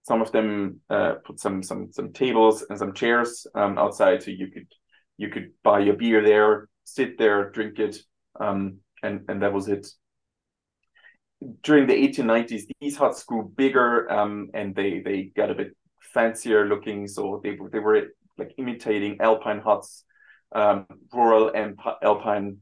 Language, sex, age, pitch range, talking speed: English, male, 30-49, 100-120 Hz, 165 wpm